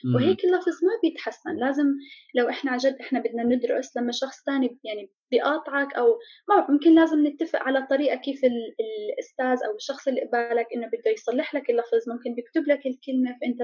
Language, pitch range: Arabic, 245-310 Hz